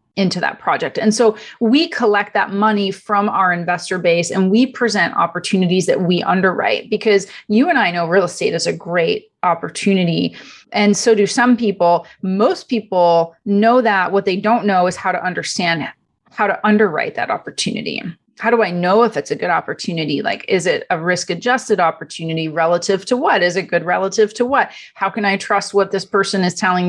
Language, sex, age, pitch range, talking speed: English, female, 30-49, 175-220 Hz, 195 wpm